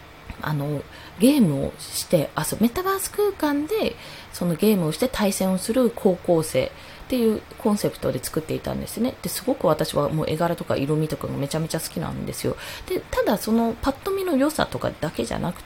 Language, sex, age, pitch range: Japanese, female, 20-39, 170-275 Hz